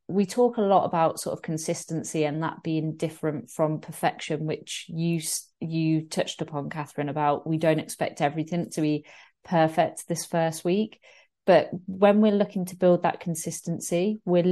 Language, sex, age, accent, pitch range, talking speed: English, female, 30-49, British, 155-180 Hz, 165 wpm